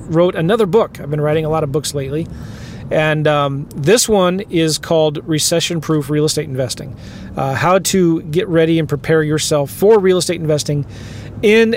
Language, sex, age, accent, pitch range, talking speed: English, male, 40-59, American, 145-180 Hz, 180 wpm